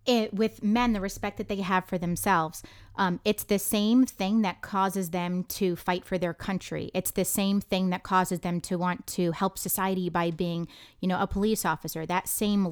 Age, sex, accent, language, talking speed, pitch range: 30-49, female, American, English, 205 wpm, 180-205 Hz